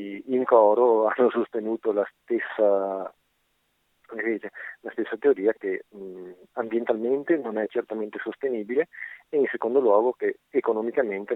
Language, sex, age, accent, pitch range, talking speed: Italian, male, 40-59, native, 110-145 Hz, 105 wpm